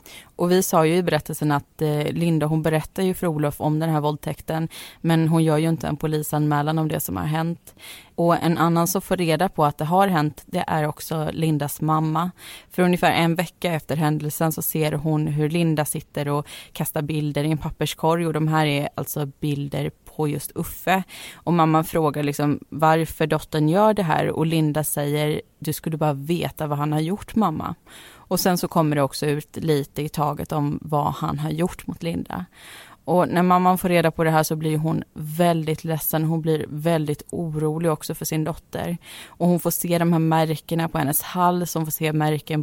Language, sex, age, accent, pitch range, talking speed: Swedish, female, 20-39, native, 150-170 Hz, 205 wpm